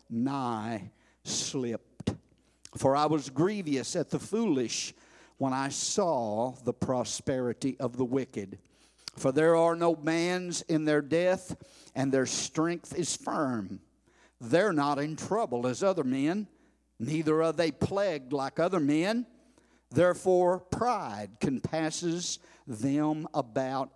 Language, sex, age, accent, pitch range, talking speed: English, male, 50-69, American, 125-155 Hz, 125 wpm